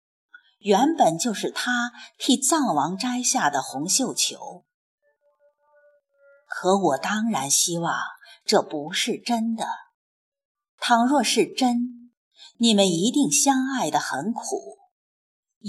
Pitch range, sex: 205-290 Hz, female